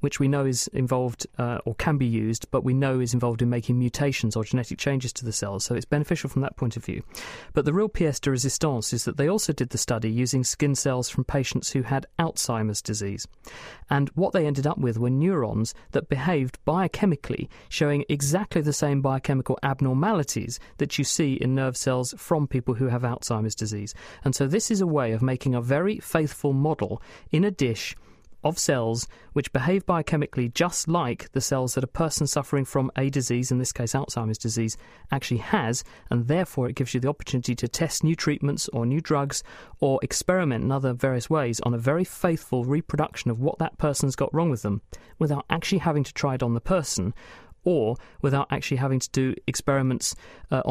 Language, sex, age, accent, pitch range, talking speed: English, male, 40-59, British, 120-145 Hz, 200 wpm